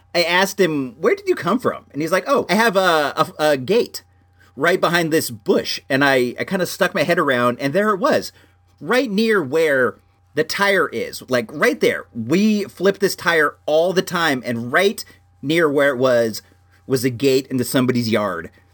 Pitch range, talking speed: 120-175 Hz, 200 wpm